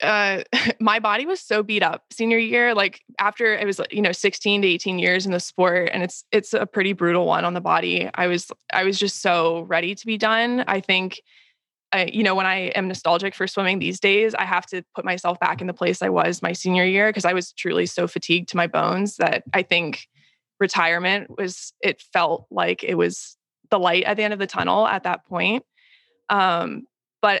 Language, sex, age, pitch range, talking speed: English, female, 20-39, 180-210 Hz, 220 wpm